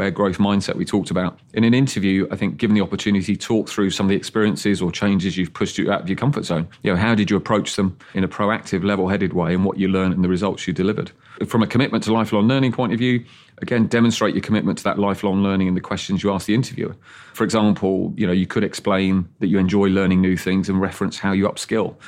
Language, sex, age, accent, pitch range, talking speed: English, male, 30-49, British, 95-110 Hz, 250 wpm